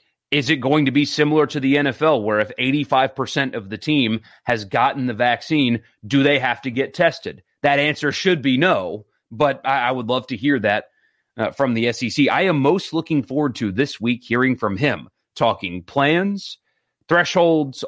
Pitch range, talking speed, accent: 115-145 Hz, 180 wpm, American